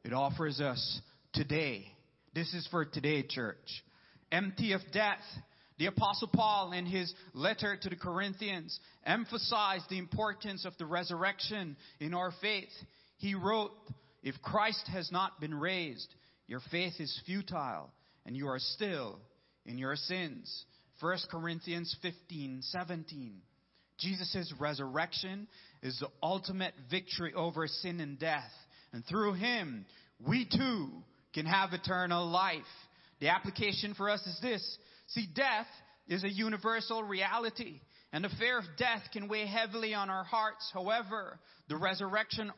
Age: 30-49